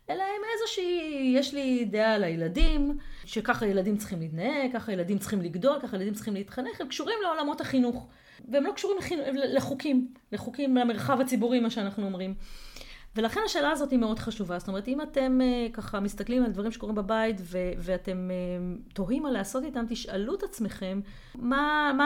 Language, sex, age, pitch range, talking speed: Hebrew, female, 30-49, 200-280 Hz, 165 wpm